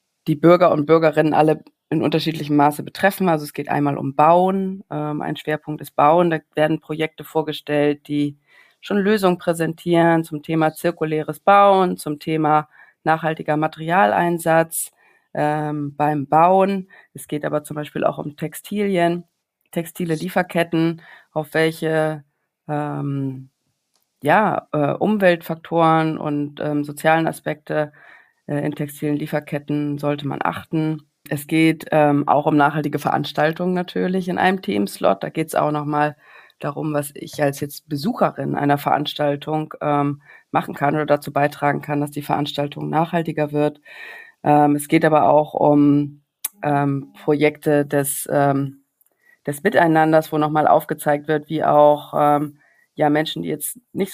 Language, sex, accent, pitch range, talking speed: German, female, German, 145-165 Hz, 140 wpm